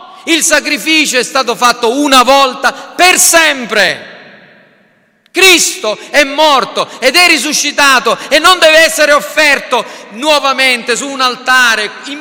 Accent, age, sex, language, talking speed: native, 40-59, male, Italian, 125 wpm